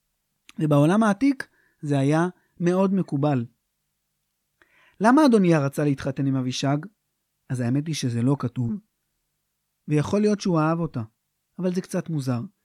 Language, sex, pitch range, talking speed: Hebrew, male, 140-215 Hz, 130 wpm